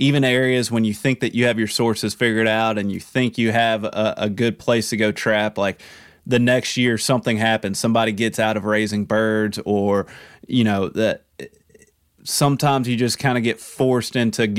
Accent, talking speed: American, 200 wpm